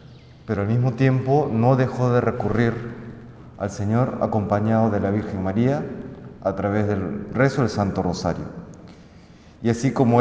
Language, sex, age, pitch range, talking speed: Spanish, male, 30-49, 105-130 Hz, 145 wpm